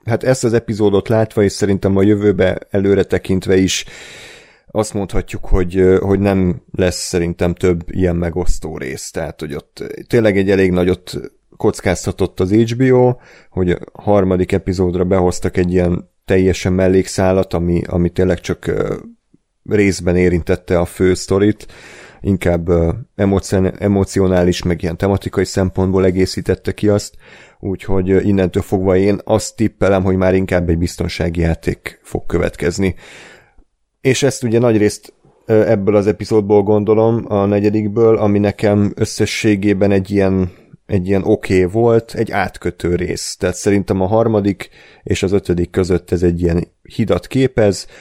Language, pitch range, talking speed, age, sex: Hungarian, 90-105 Hz, 135 wpm, 30-49, male